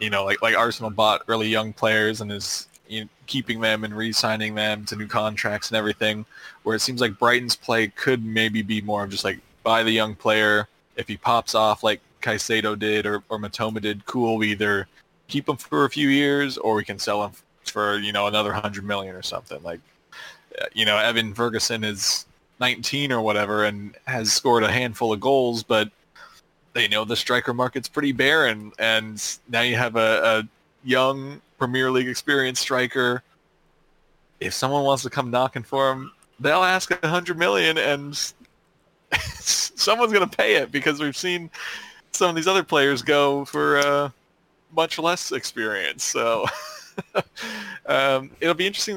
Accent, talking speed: American, 180 wpm